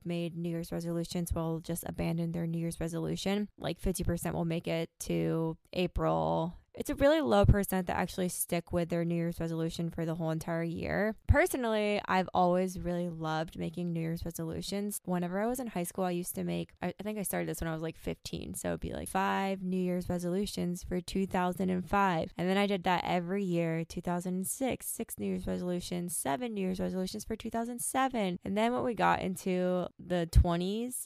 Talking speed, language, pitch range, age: 195 wpm, English, 170-200 Hz, 20-39